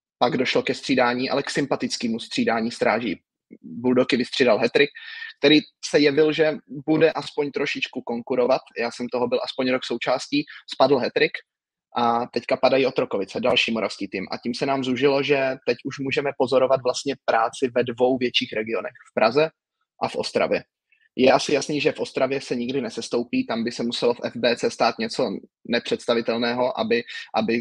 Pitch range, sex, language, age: 120-140 Hz, male, Czech, 20-39